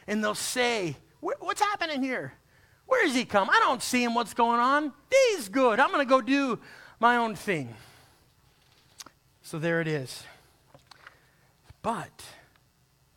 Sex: male